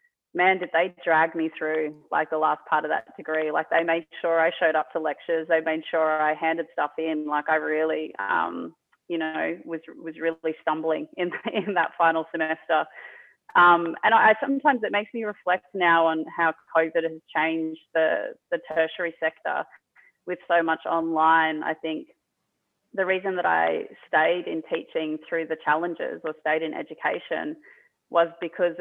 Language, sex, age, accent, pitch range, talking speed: English, female, 20-39, Australian, 155-170 Hz, 175 wpm